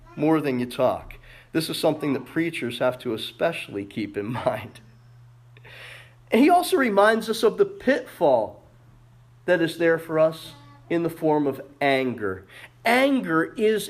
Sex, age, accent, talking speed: male, 40-59, American, 150 wpm